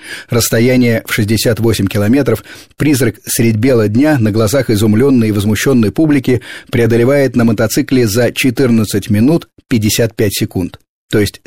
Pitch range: 105-135 Hz